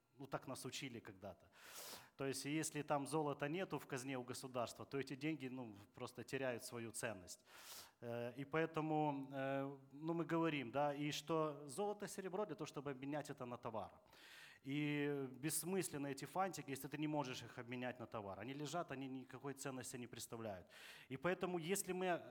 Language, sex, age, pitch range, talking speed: Russian, male, 30-49, 125-155 Hz, 170 wpm